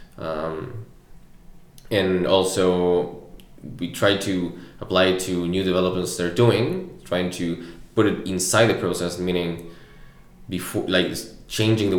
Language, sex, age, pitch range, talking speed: English, male, 20-39, 90-100 Hz, 125 wpm